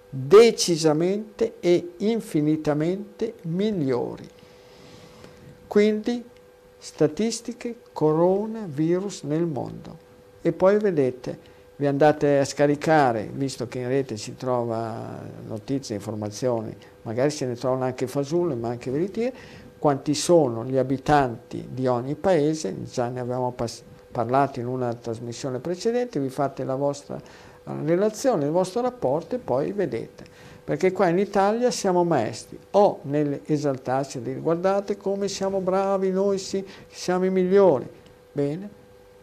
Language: Italian